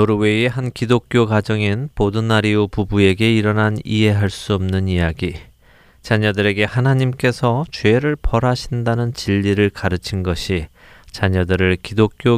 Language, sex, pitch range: Korean, male, 90-115 Hz